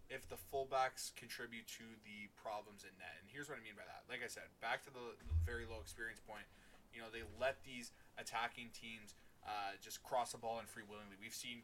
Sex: male